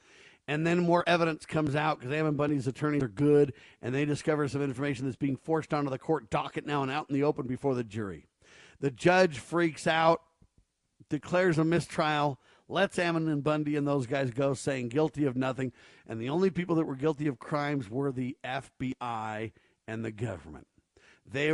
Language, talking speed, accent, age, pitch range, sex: English, 190 wpm, American, 50-69, 125-155 Hz, male